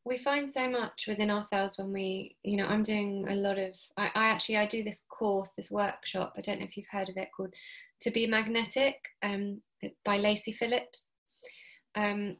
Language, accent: English, British